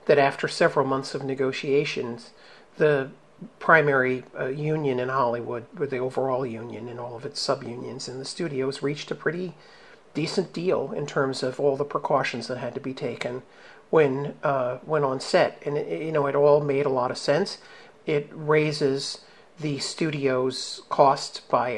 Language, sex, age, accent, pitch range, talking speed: English, male, 50-69, American, 130-150 Hz, 170 wpm